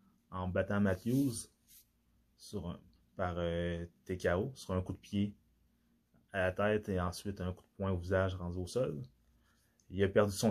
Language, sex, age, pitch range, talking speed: French, male, 20-39, 90-105 Hz, 175 wpm